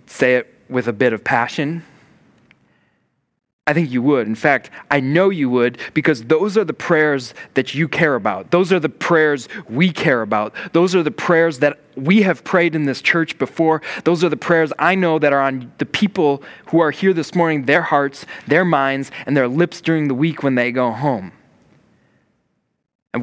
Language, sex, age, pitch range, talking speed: English, male, 20-39, 135-175 Hz, 195 wpm